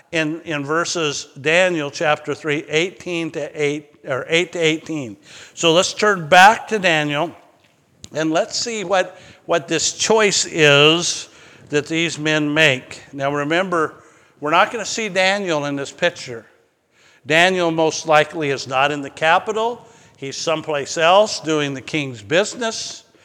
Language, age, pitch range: English, 50-69, 145-180 Hz